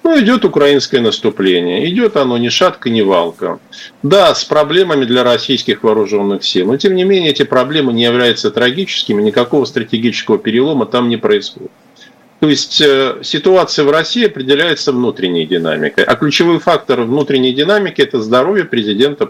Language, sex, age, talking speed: Russian, male, 50-69, 150 wpm